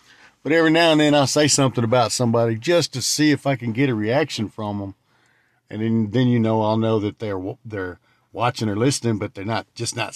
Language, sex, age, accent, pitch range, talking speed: English, male, 50-69, American, 110-140 Hz, 235 wpm